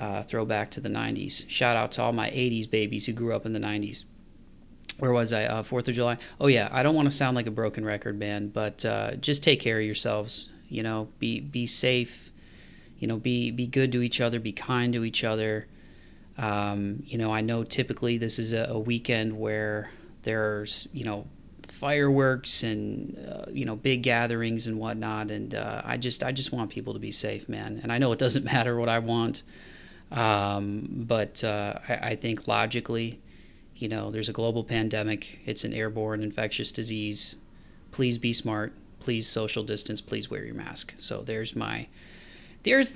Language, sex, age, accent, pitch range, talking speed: English, male, 30-49, American, 105-120 Hz, 195 wpm